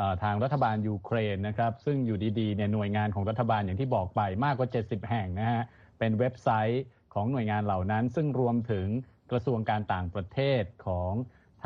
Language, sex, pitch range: Thai, male, 100-120 Hz